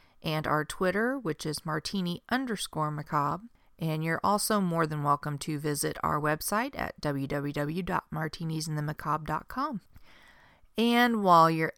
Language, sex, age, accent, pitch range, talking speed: English, female, 30-49, American, 150-195 Hz, 115 wpm